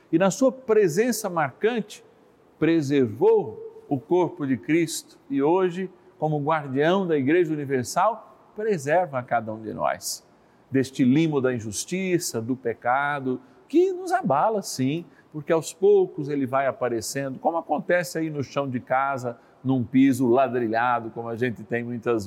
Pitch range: 130-195 Hz